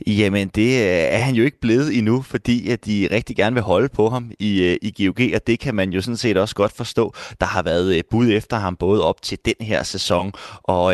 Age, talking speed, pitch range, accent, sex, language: 20-39, 230 wpm, 95-120 Hz, native, male, Danish